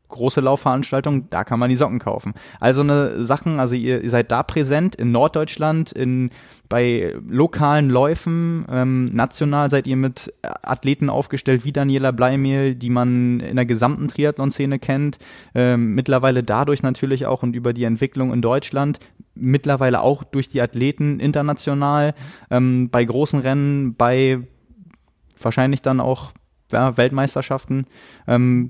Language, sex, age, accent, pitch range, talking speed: German, male, 20-39, German, 120-140 Hz, 140 wpm